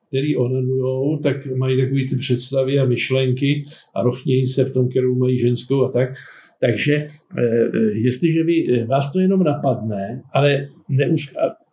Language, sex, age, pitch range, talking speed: Slovak, male, 60-79, 130-160 Hz, 140 wpm